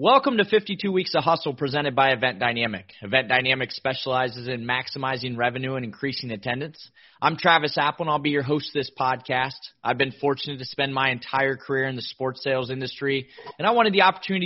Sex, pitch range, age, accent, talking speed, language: male, 135-175 Hz, 30-49, American, 200 wpm, English